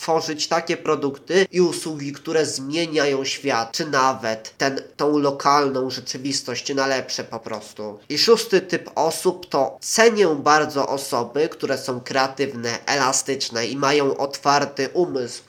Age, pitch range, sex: 20-39, 125-155 Hz, male